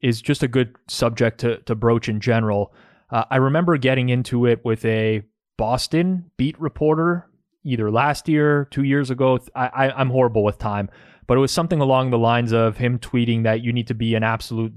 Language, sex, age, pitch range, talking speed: English, male, 20-39, 115-140 Hz, 200 wpm